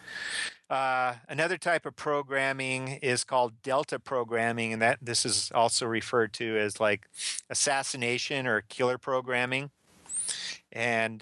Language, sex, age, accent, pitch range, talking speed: English, male, 40-59, American, 110-130 Hz, 125 wpm